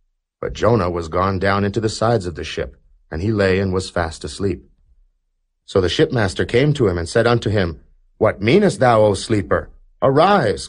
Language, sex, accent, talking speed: English, male, American, 190 wpm